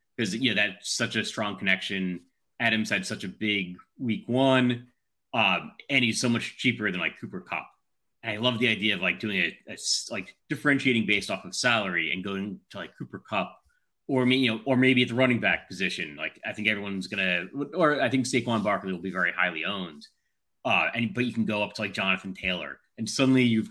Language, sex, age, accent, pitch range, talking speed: English, male, 30-49, American, 95-125 Hz, 215 wpm